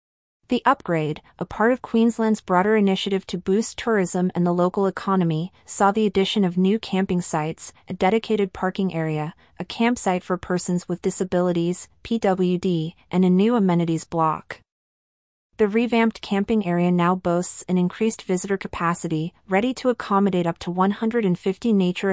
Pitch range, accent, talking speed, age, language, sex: 175-205 Hz, American, 150 wpm, 30-49, English, female